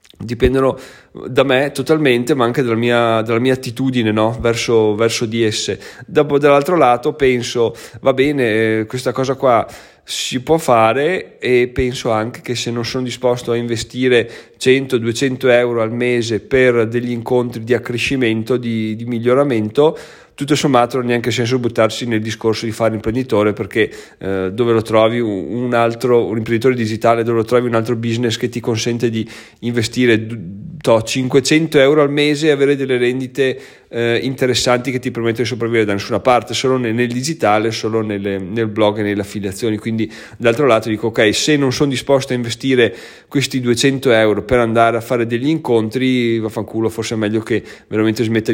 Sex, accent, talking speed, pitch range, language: male, native, 170 wpm, 110-130 Hz, Italian